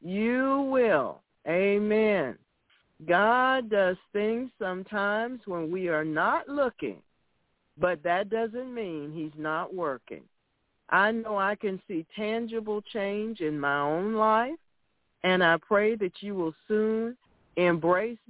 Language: English